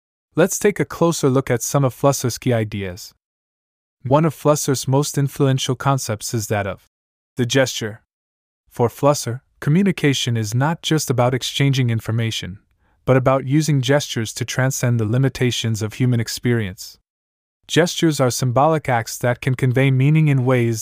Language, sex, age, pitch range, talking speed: English, male, 20-39, 110-135 Hz, 150 wpm